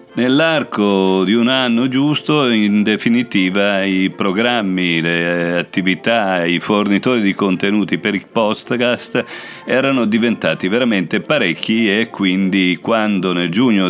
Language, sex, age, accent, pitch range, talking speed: Italian, male, 50-69, native, 90-105 Hz, 115 wpm